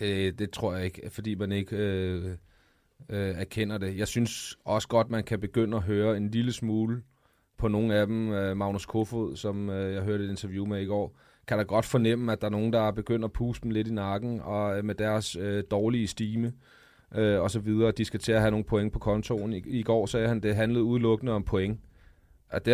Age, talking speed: 30-49, 225 wpm